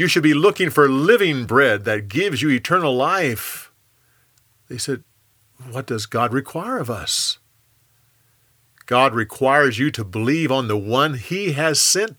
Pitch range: 115-170 Hz